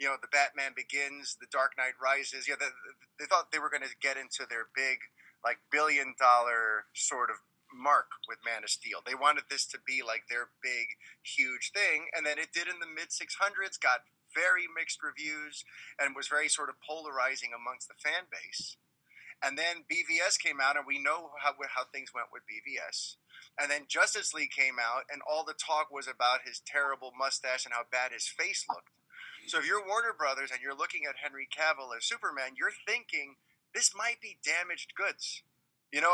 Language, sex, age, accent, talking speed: English, male, 30-49, American, 195 wpm